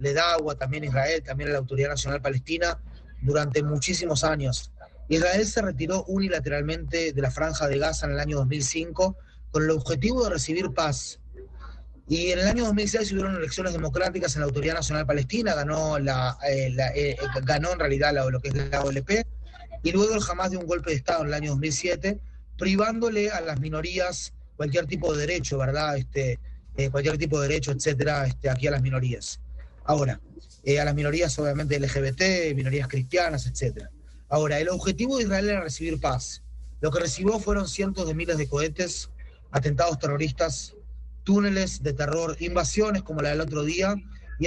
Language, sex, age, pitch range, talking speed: Spanish, male, 30-49, 135-175 Hz, 180 wpm